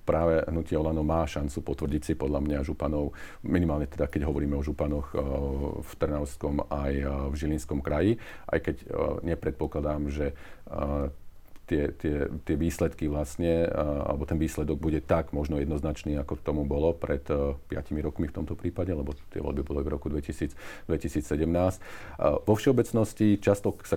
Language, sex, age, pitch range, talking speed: Slovak, male, 50-69, 75-85 Hz, 150 wpm